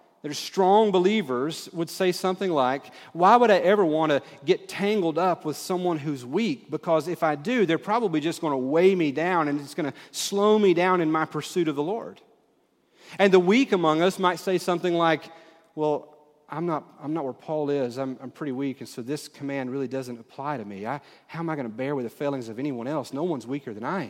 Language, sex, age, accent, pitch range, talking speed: English, male, 40-59, American, 135-175 Hz, 230 wpm